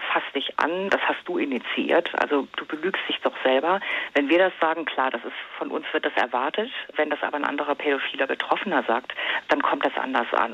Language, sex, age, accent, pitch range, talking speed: German, female, 40-59, German, 140-170 Hz, 215 wpm